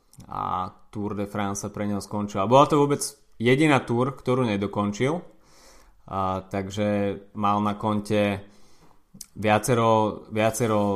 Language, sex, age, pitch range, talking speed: Slovak, male, 20-39, 100-115 Hz, 125 wpm